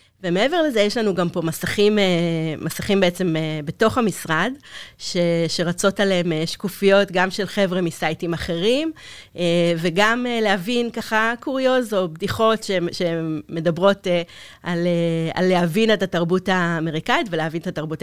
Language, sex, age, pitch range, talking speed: Hebrew, female, 30-49, 165-200 Hz, 125 wpm